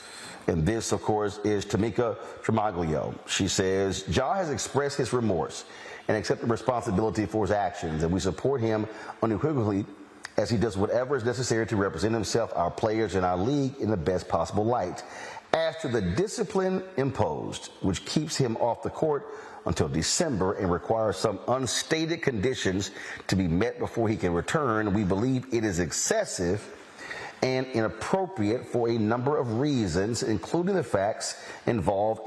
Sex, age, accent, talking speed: male, 40-59, American, 160 wpm